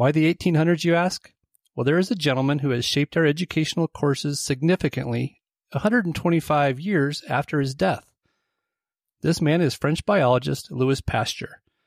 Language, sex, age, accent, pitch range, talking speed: English, male, 30-49, American, 125-160 Hz, 145 wpm